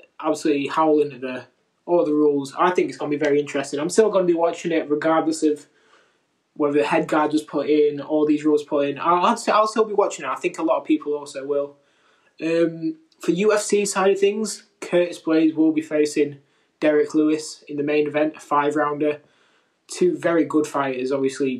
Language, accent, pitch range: English, British, 145-165 Hz